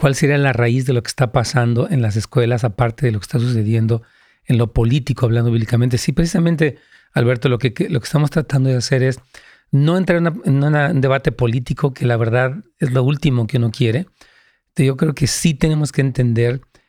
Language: Spanish